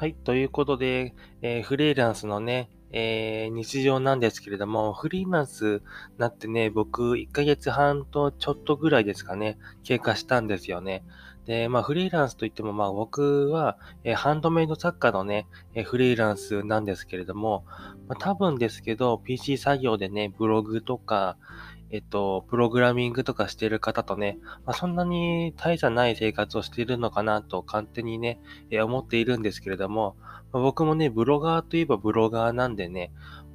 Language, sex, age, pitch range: Japanese, male, 20-39, 105-130 Hz